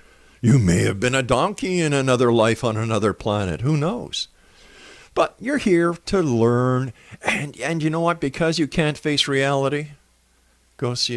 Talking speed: 165 wpm